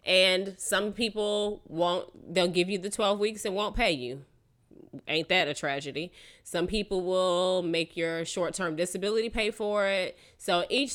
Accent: American